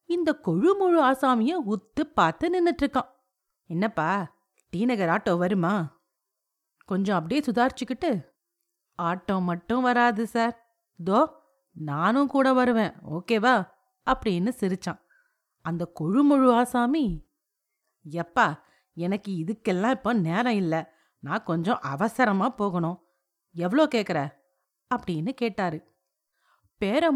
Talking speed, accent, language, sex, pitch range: 95 wpm, native, Tamil, female, 185-275 Hz